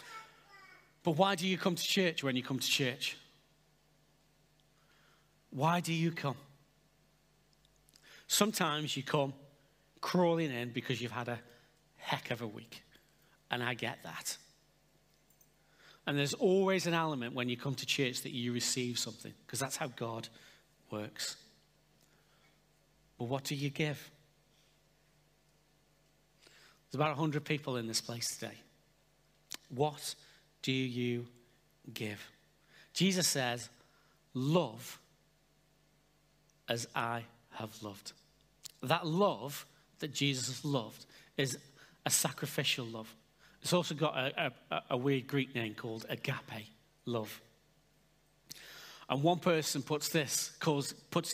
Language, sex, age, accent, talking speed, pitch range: English, male, 40-59, British, 120 wpm, 120-155 Hz